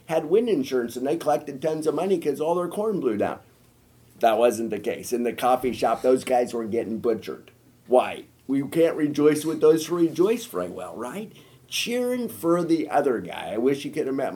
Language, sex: English, male